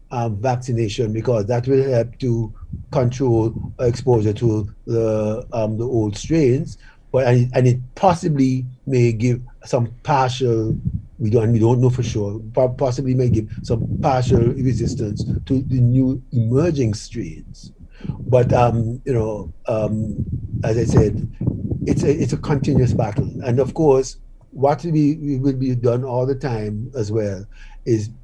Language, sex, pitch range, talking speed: English, male, 110-130 Hz, 150 wpm